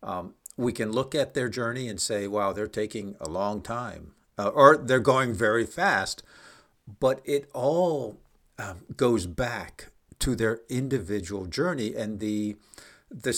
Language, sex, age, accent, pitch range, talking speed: English, male, 60-79, American, 100-125 Hz, 150 wpm